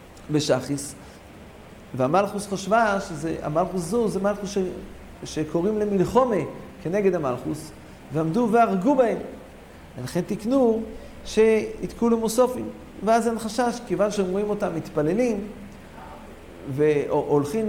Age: 50-69